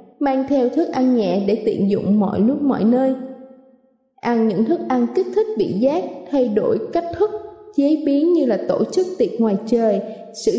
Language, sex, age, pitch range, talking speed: Vietnamese, female, 20-39, 225-285 Hz, 195 wpm